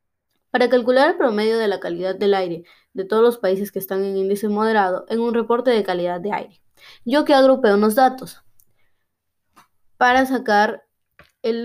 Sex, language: female, Spanish